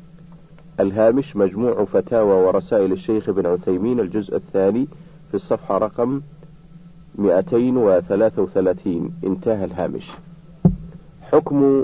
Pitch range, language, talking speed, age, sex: 100-160 Hz, Arabic, 80 wpm, 50-69, male